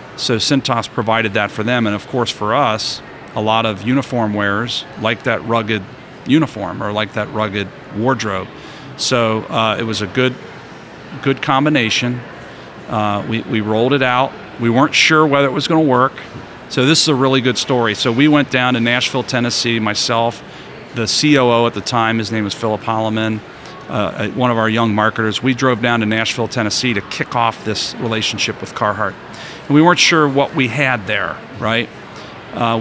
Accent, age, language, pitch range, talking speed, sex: American, 40-59, English, 110-125 Hz, 185 wpm, male